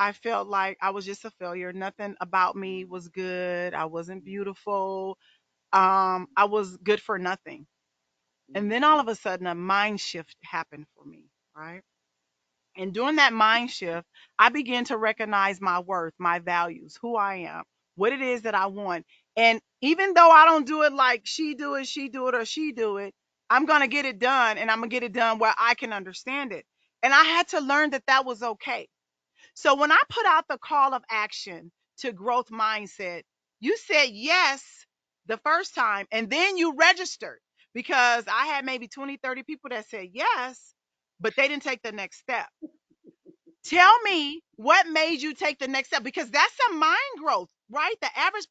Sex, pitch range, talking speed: female, 200-300 Hz, 195 wpm